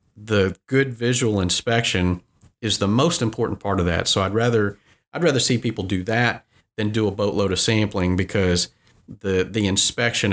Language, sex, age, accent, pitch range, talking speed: English, male, 40-59, American, 90-110 Hz, 175 wpm